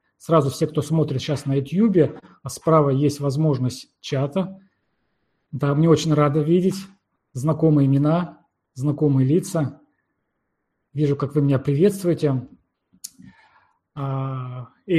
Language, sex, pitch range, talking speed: Russian, male, 135-165 Hz, 110 wpm